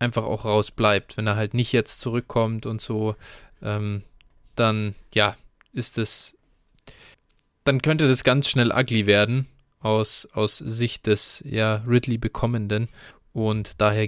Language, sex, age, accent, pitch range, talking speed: German, male, 20-39, German, 110-130 Hz, 130 wpm